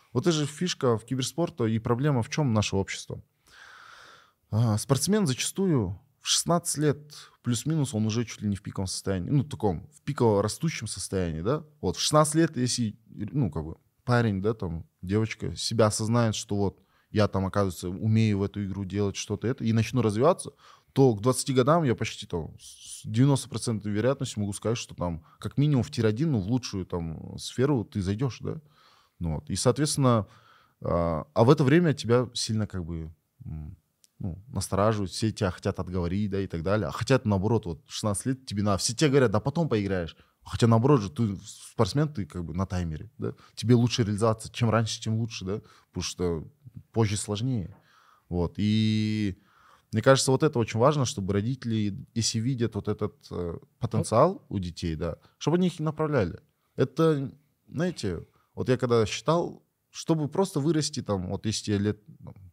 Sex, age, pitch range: male, 20-39, 100-130 Hz